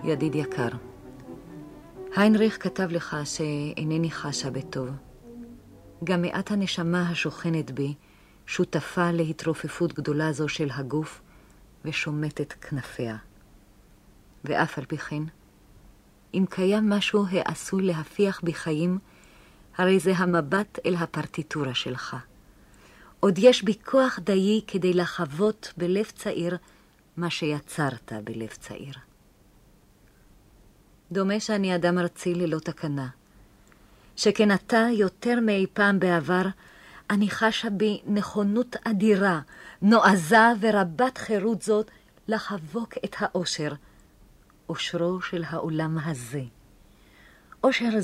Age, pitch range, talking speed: 40-59, 140-195 Hz, 100 wpm